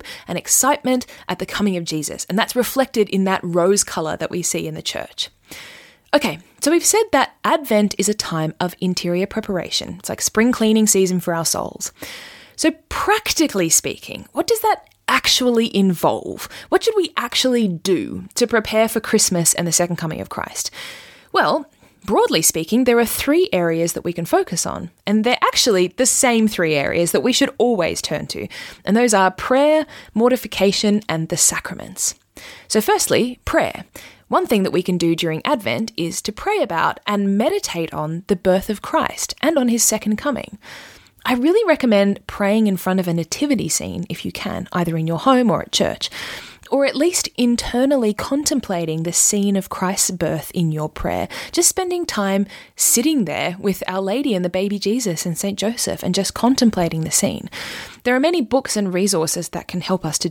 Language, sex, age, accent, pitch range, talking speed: English, female, 20-39, Australian, 180-255 Hz, 185 wpm